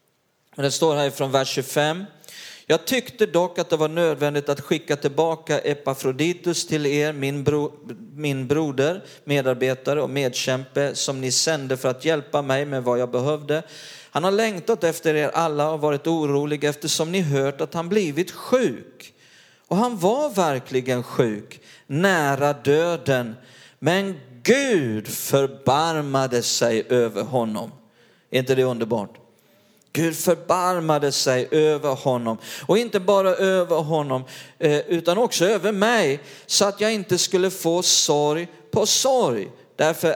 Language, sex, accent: Swedish, male, native